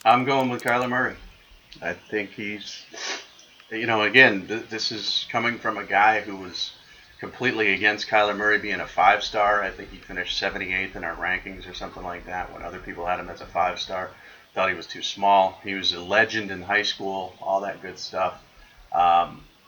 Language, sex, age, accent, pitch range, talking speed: English, male, 30-49, American, 95-105 Hz, 195 wpm